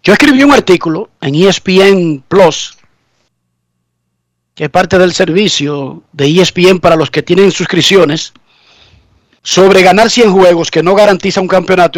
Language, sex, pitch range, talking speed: Spanish, male, 160-220 Hz, 140 wpm